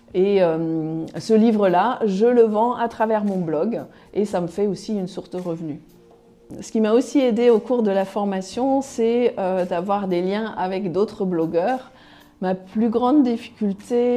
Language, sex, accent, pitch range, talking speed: French, female, French, 180-225 Hz, 180 wpm